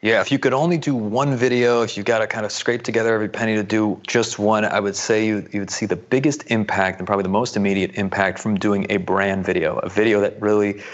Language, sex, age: English, male, 30-49